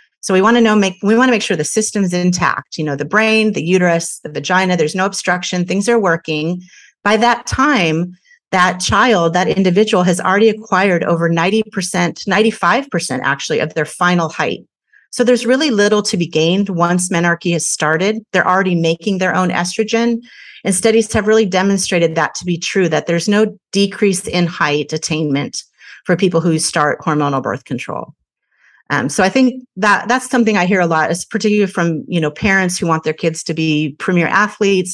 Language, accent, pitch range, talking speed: English, American, 165-210 Hz, 190 wpm